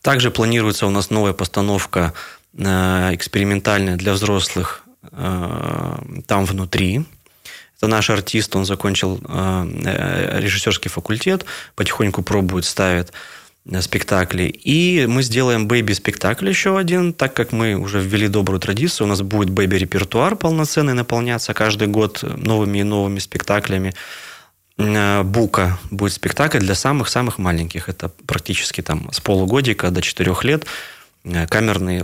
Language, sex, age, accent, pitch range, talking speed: Russian, male, 20-39, native, 95-115 Hz, 125 wpm